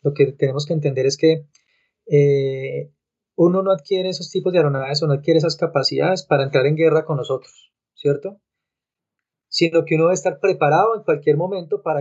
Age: 20-39